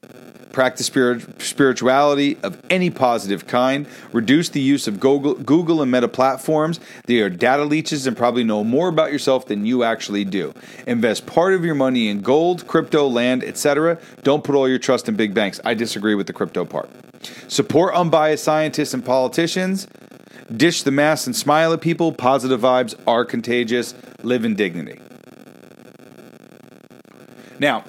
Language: English